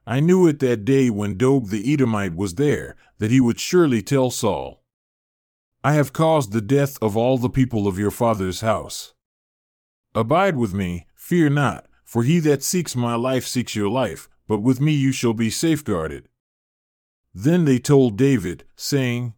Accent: American